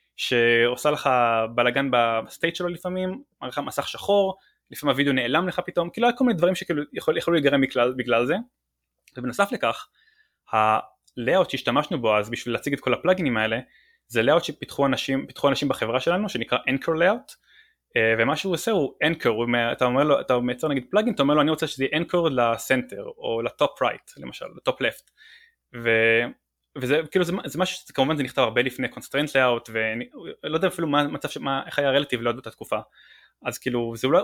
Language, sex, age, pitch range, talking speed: Hebrew, male, 20-39, 125-180 Hz, 185 wpm